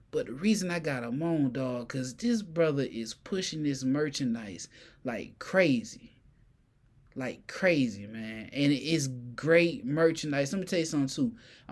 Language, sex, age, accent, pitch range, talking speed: English, male, 20-39, American, 120-165 Hz, 155 wpm